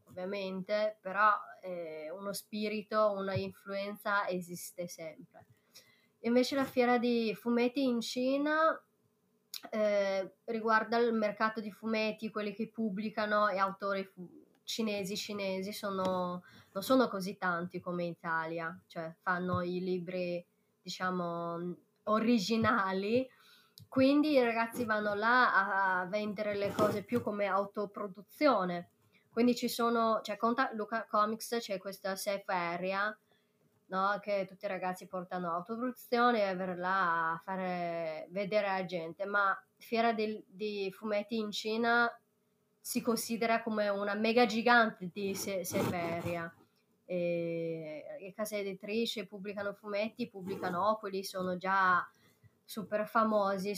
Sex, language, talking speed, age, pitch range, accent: female, Italian, 125 wpm, 20-39, 185-220 Hz, native